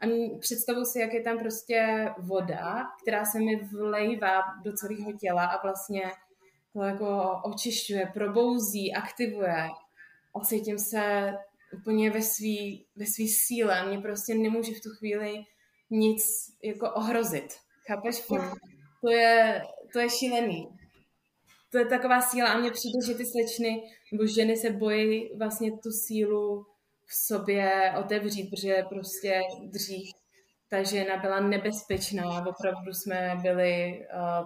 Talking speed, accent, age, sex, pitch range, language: 130 wpm, native, 20-39, female, 190-220 Hz, Czech